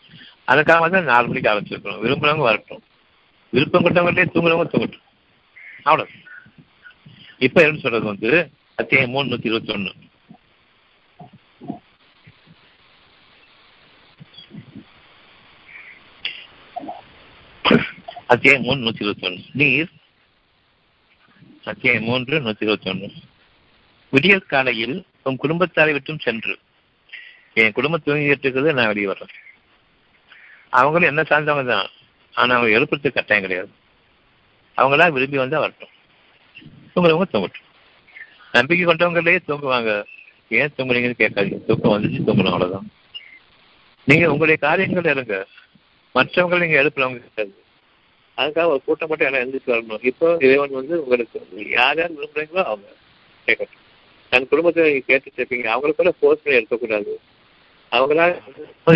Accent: native